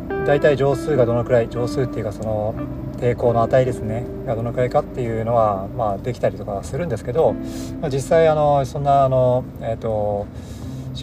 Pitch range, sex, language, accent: 105-130 Hz, male, Japanese, native